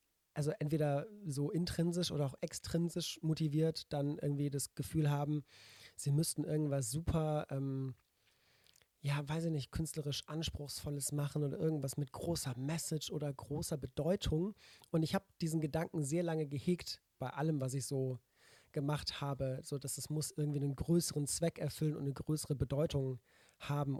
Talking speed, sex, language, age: 155 wpm, male, English, 40-59